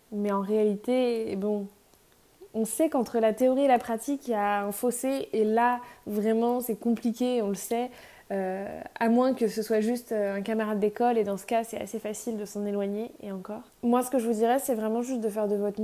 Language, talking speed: French, 225 wpm